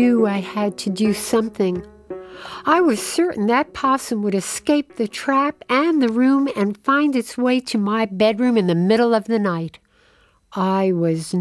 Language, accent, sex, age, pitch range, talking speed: English, American, female, 60-79, 180-245 Hz, 175 wpm